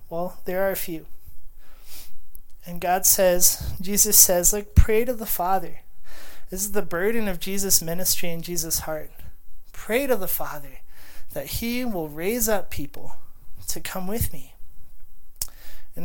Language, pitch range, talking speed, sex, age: English, 155-195 Hz, 150 wpm, male, 30-49